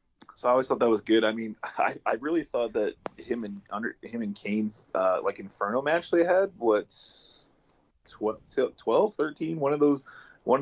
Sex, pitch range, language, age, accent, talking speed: male, 105-120 Hz, English, 20-39, American, 180 wpm